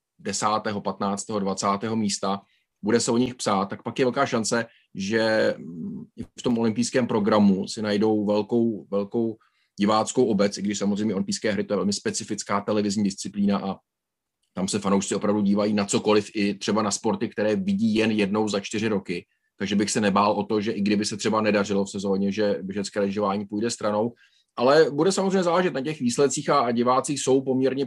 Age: 30-49